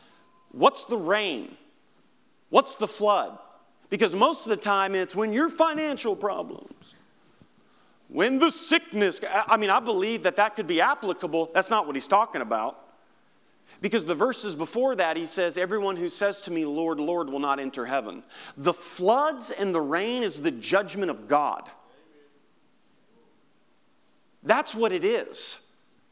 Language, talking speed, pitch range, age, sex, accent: English, 150 wpm, 195-275 Hz, 40-59, male, American